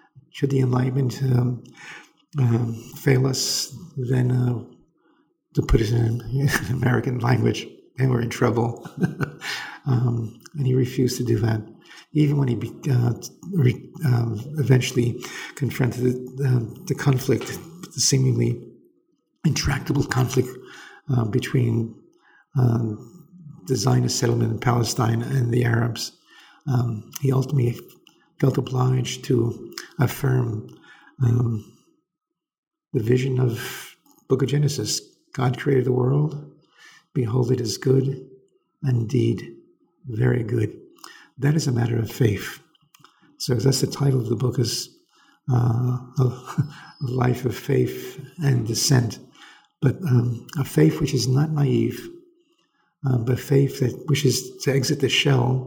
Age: 50-69